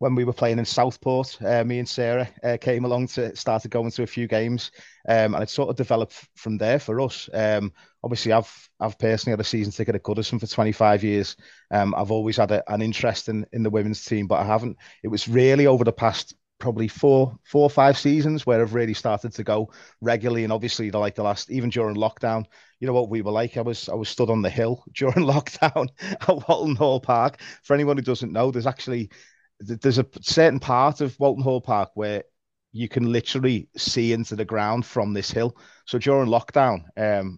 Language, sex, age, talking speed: English, male, 30-49, 225 wpm